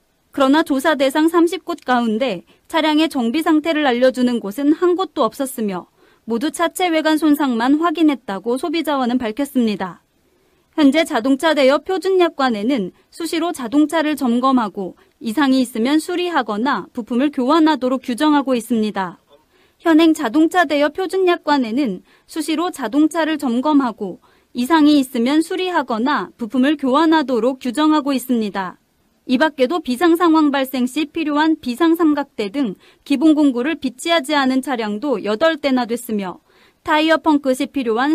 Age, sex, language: 30-49, female, Korean